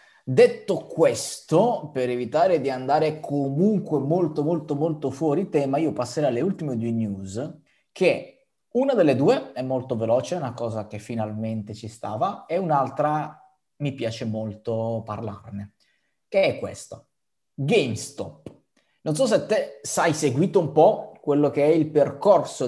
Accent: native